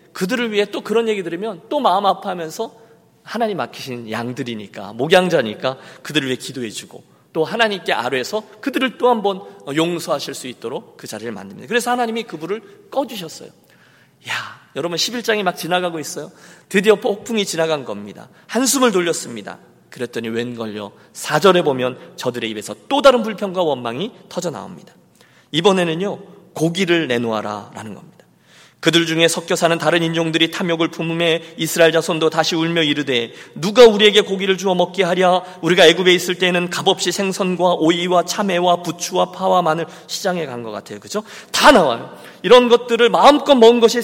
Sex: male